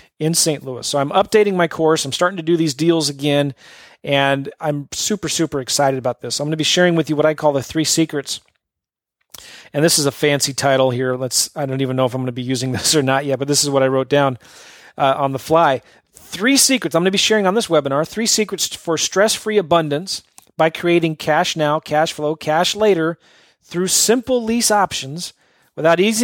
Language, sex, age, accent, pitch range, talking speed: English, male, 40-59, American, 140-175 Hz, 215 wpm